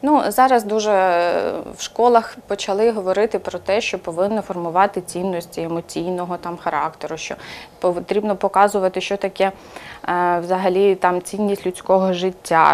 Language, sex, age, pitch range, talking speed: Ukrainian, female, 20-39, 180-225 Hz, 125 wpm